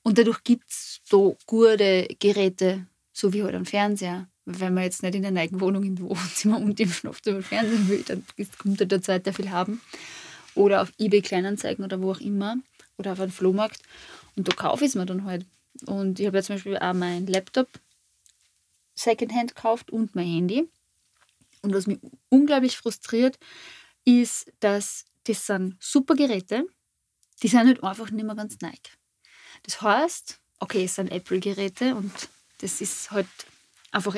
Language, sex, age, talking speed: German, female, 20-39, 170 wpm